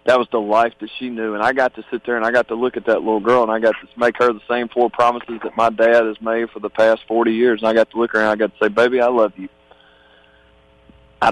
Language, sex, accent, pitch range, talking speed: English, male, American, 105-125 Hz, 305 wpm